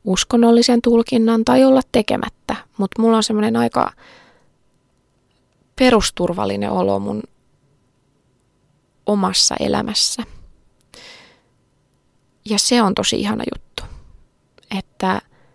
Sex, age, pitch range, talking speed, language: female, 20-39, 175-230 Hz, 85 wpm, English